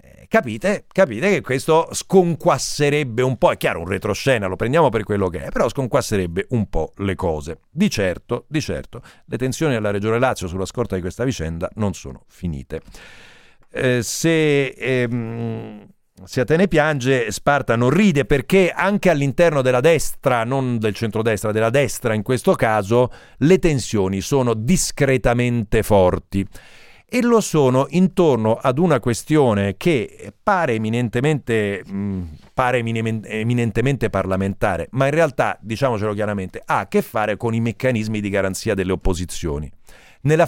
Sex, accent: male, native